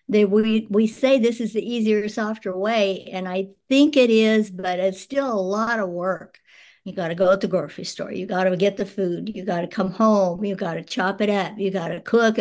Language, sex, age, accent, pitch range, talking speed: English, male, 60-79, American, 185-215 Hz, 240 wpm